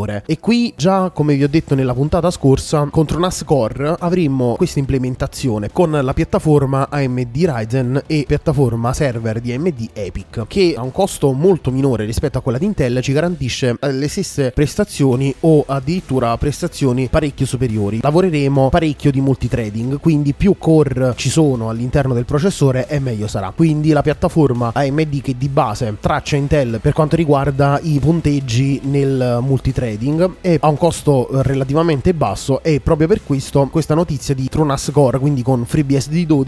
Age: 20-39